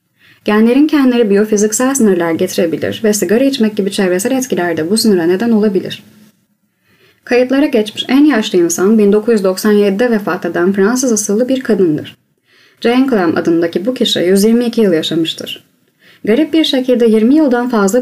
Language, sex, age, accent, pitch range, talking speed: Turkish, female, 20-39, native, 195-245 Hz, 140 wpm